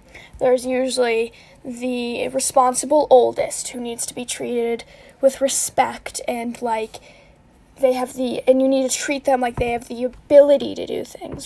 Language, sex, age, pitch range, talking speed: English, female, 10-29, 245-280 Hz, 160 wpm